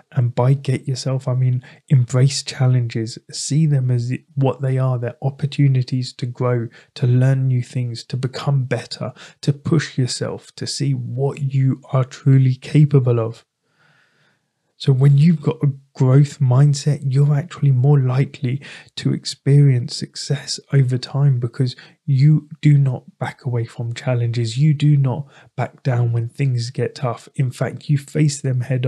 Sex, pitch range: male, 125-145 Hz